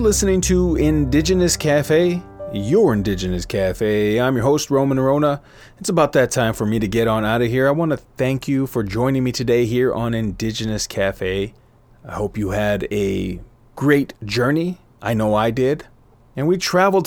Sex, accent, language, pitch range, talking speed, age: male, American, English, 110-145 Hz, 180 wpm, 30-49